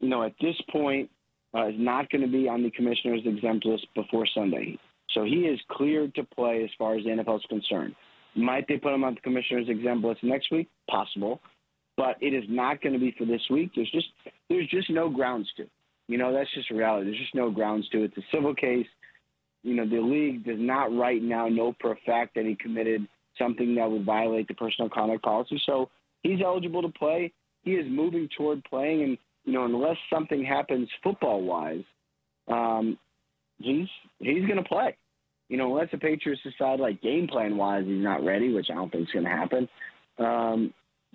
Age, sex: 20-39, male